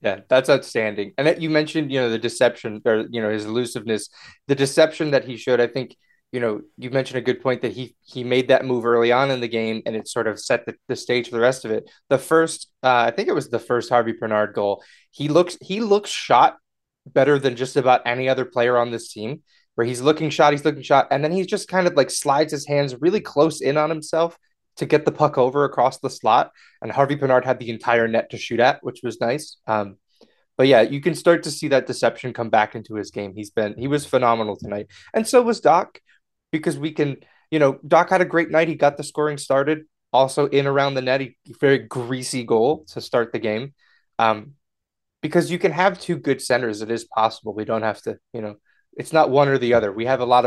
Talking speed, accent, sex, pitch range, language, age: 245 wpm, American, male, 115-155 Hz, English, 20-39